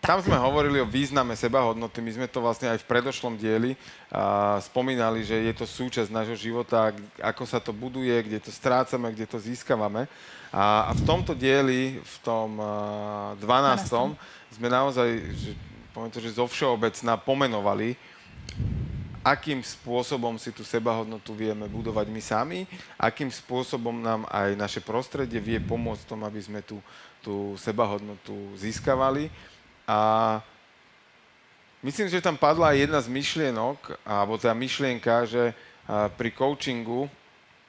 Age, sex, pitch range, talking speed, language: 30-49, male, 110-125 Hz, 135 wpm, Slovak